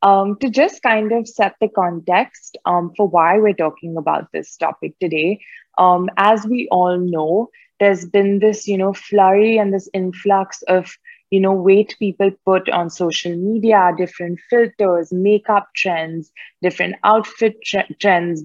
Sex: female